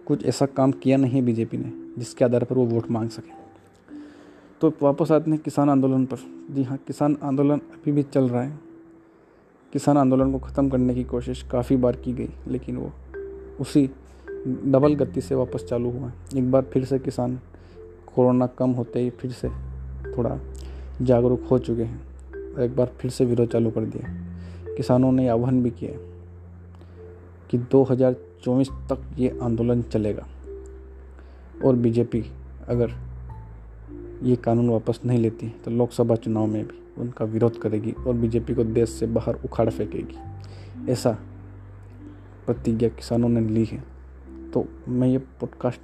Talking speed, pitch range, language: 160 wpm, 95-130 Hz, Hindi